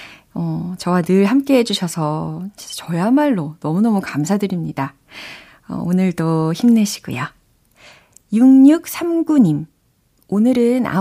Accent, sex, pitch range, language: native, female, 165-240 Hz, Korean